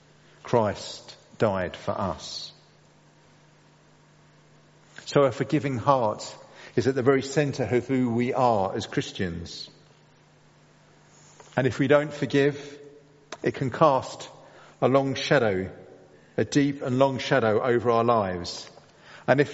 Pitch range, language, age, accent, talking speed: 115-145 Hz, English, 50-69, British, 125 wpm